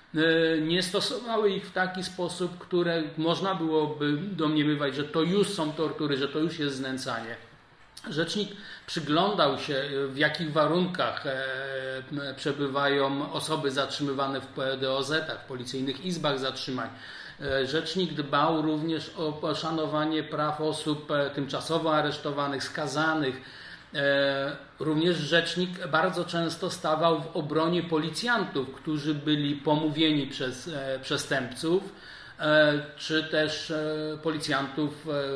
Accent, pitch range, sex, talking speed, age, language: native, 140-170 Hz, male, 105 wpm, 40-59, Polish